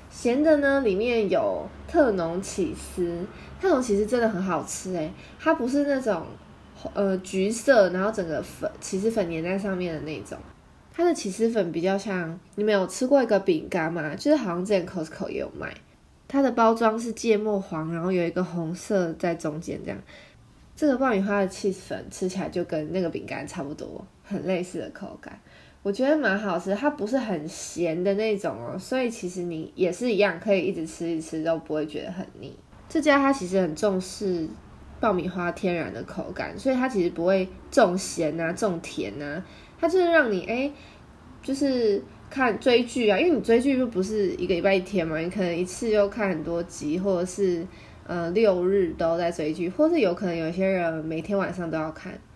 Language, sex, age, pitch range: English, female, 20-39, 170-225 Hz